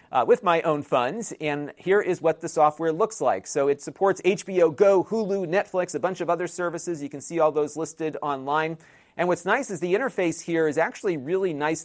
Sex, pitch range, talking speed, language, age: male, 150-175 Hz, 220 wpm, English, 40-59